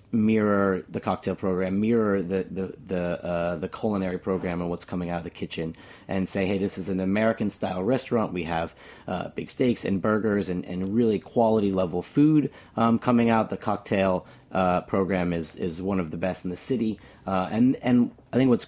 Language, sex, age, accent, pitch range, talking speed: English, male, 30-49, American, 90-110 Hz, 200 wpm